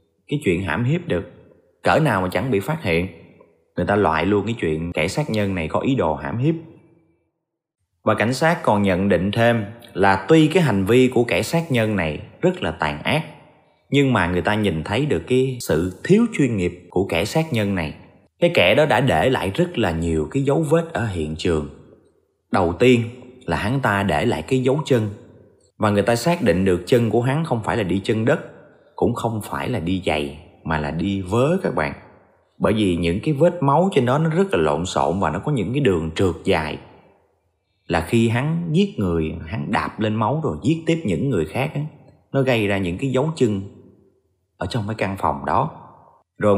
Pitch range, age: 90-135 Hz, 20-39